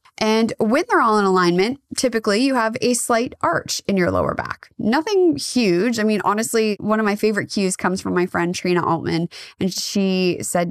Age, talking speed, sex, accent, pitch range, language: 20-39, 195 wpm, female, American, 185-255 Hz, English